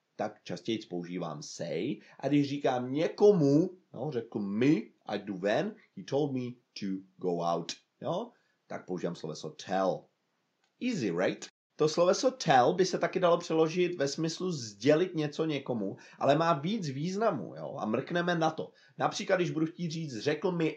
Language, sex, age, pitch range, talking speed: Czech, male, 30-49, 120-175 Hz, 160 wpm